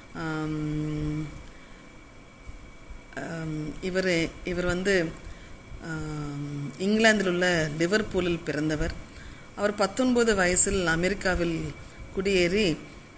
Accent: native